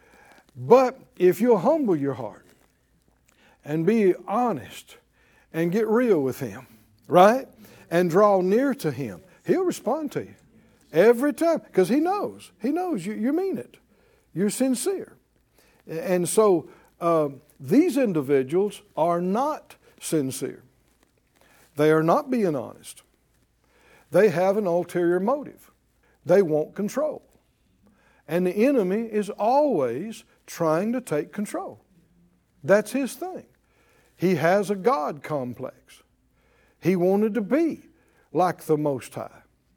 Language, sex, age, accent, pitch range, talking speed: English, male, 60-79, American, 160-270 Hz, 125 wpm